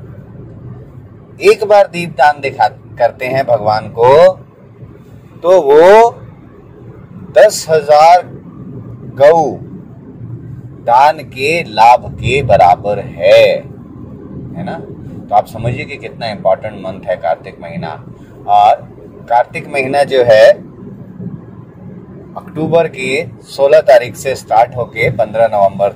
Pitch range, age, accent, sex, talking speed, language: 110-170 Hz, 30-49, native, male, 105 wpm, Hindi